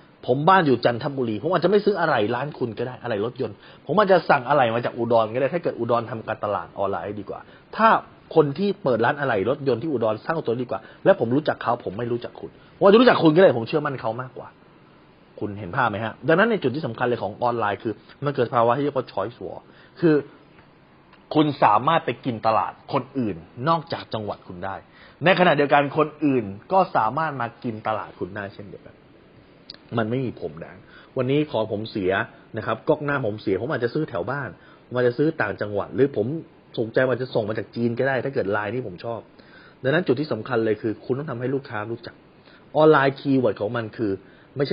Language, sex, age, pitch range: Thai, male, 30-49, 110-145 Hz